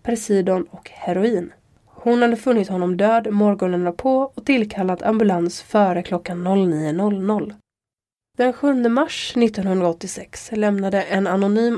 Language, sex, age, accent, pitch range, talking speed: Swedish, female, 20-39, native, 180-235 Hz, 115 wpm